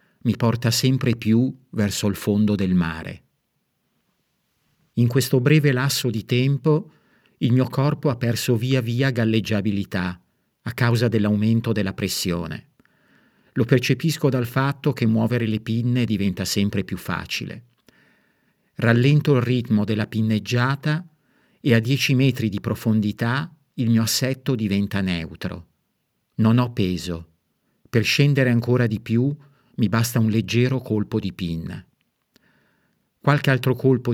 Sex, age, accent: male, 50-69, native